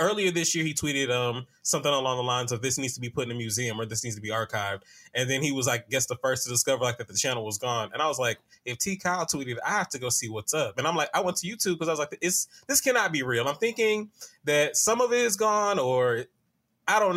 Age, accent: 20-39, American